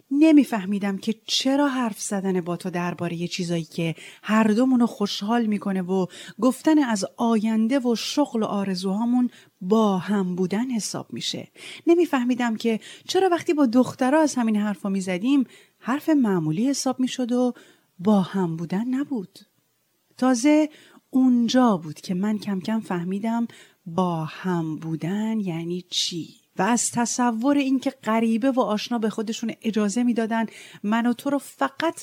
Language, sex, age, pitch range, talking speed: Persian, female, 30-49, 185-250 Hz, 145 wpm